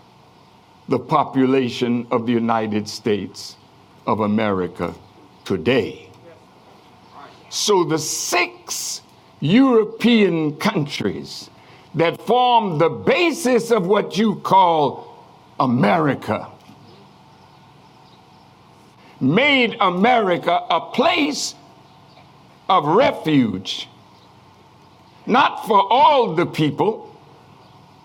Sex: male